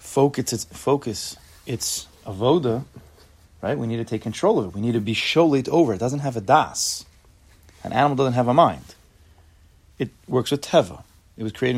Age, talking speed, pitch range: 30-49, 190 wpm, 90-115 Hz